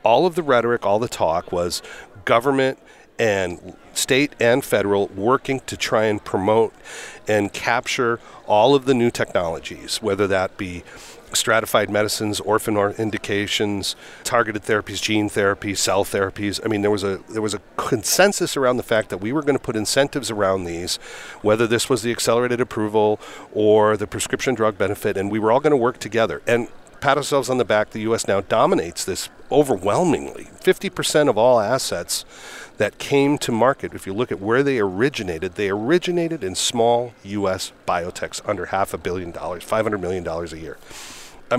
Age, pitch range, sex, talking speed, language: 40-59, 100-130 Hz, male, 175 wpm, English